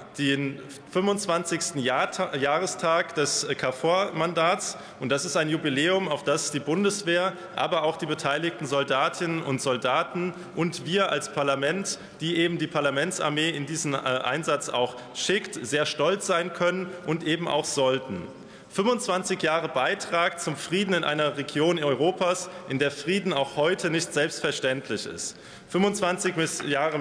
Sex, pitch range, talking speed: male, 140-175 Hz, 140 wpm